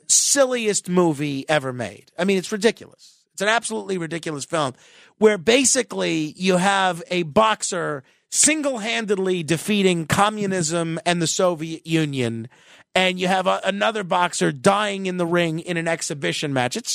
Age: 40-59